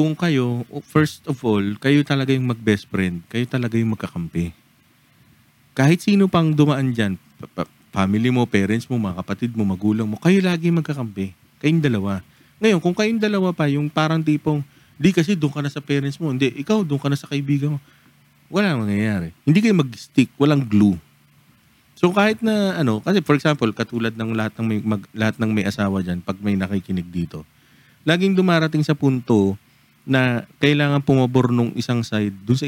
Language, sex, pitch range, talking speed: Filipino, male, 105-155 Hz, 180 wpm